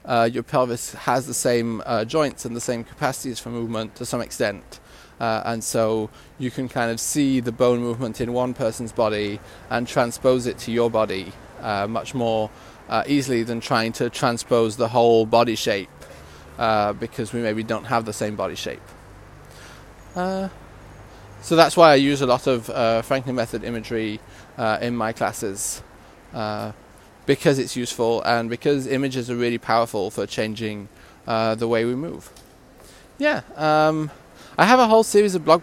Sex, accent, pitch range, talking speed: male, British, 115-140 Hz, 175 wpm